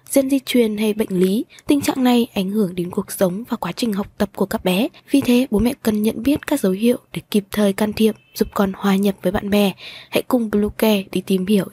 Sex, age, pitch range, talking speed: female, 20-39, 195-250 Hz, 255 wpm